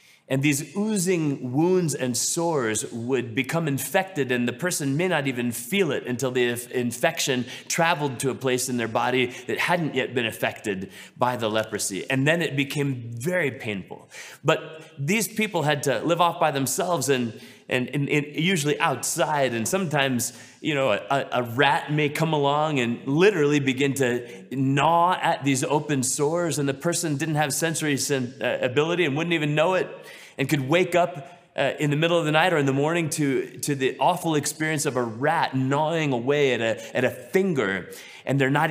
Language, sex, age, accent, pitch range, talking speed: English, male, 30-49, American, 130-165 Hz, 190 wpm